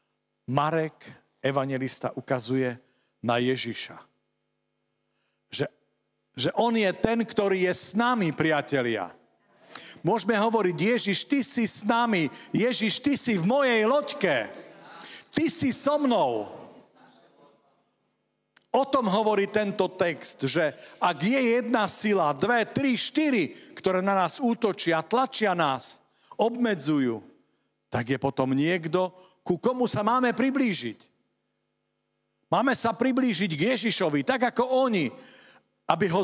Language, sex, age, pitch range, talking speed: Slovak, male, 50-69, 155-235 Hz, 120 wpm